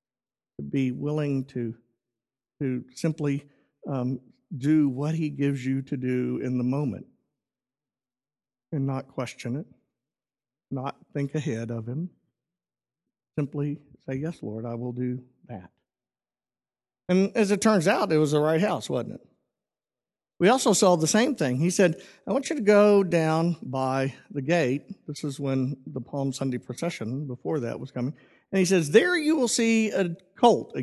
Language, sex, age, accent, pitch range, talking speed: English, male, 50-69, American, 135-195 Hz, 165 wpm